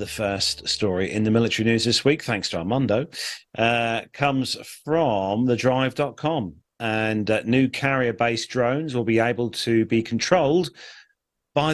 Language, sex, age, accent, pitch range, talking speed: English, male, 40-59, British, 105-135 Hz, 145 wpm